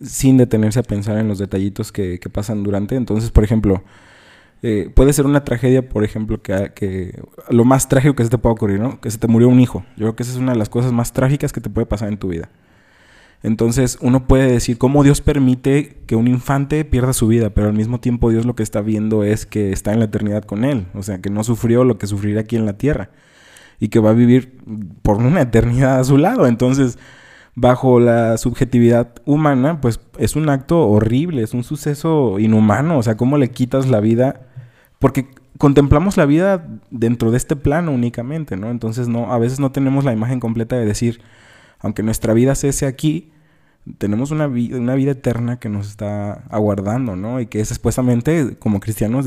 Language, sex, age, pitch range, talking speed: Spanish, male, 20-39, 110-130 Hz, 210 wpm